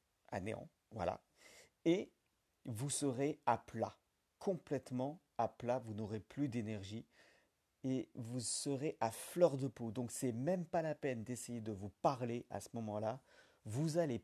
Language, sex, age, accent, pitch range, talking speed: French, male, 50-69, French, 110-135 Hz, 155 wpm